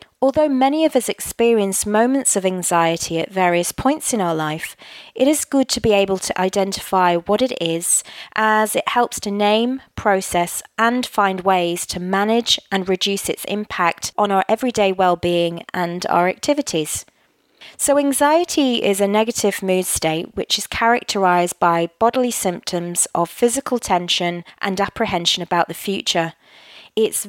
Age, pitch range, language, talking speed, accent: 20-39, 175-225 Hz, English, 150 wpm, British